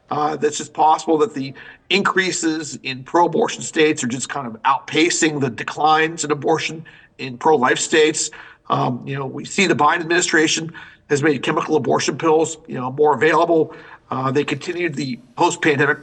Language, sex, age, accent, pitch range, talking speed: English, male, 50-69, American, 150-170 Hz, 165 wpm